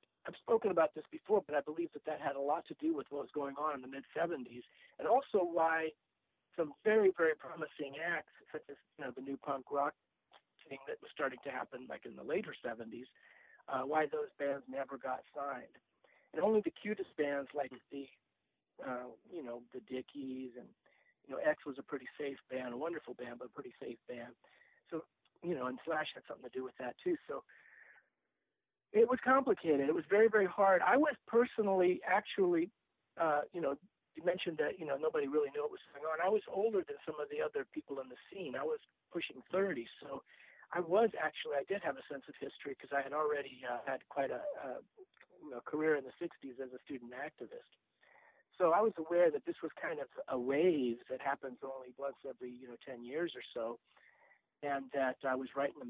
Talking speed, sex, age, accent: 215 wpm, male, 40-59, American